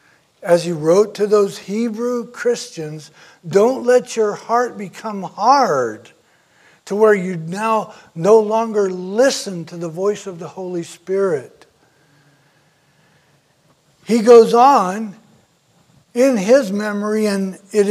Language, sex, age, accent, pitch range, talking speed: English, male, 60-79, American, 190-235 Hz, 115 wpm